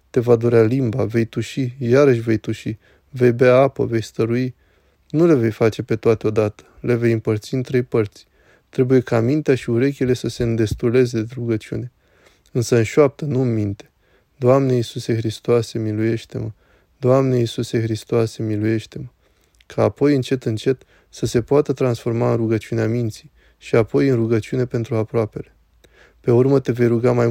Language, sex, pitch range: Romanian, male, 110-130 Hz